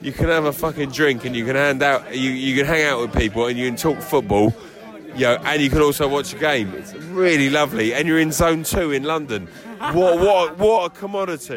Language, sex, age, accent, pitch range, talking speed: English, male, 20-39, British, 135-170 Hz, 245 wpm